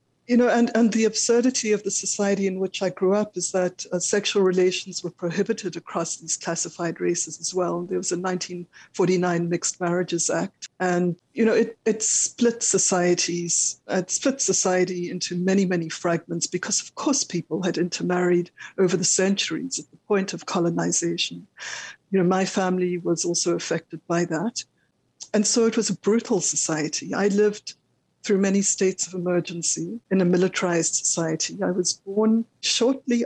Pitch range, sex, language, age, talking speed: 170-195 Hz, female, English, 60-79, 170 wpm